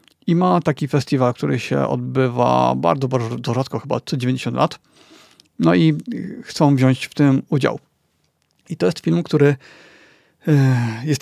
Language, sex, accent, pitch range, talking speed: Polish, male, native, 125-155 Hz, 145 wpm